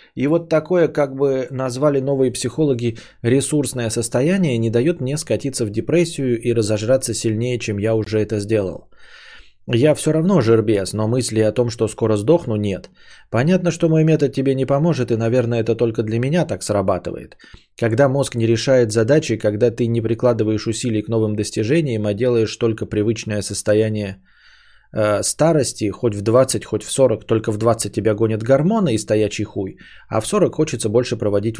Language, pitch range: Bulgarian, 105-130 Hz